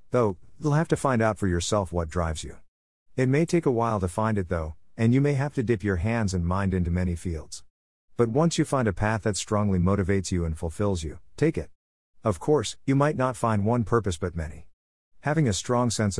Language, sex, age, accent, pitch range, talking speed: English, male, 50-69, American, 90-115 Hz, 230 wpm